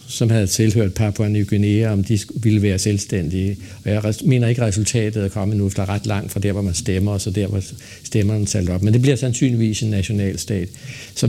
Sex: male